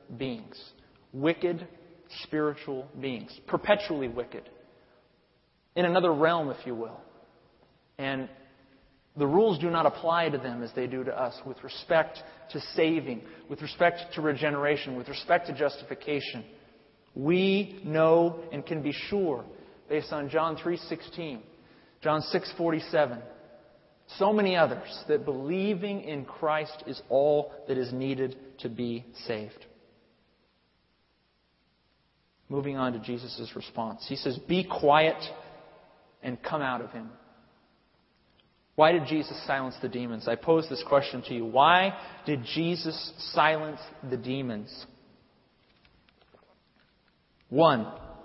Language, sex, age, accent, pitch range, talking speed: English, male, 30-49, American, 130-165 Hz, 120 wpm